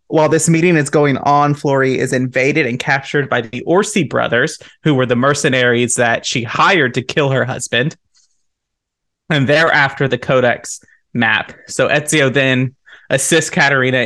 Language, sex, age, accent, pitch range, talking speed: English, male, 20-39, American, 120-145 Hz, 155 wpm